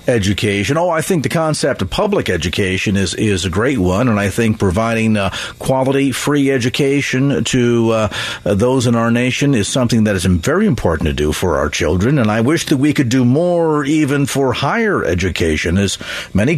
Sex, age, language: male, 50-69, English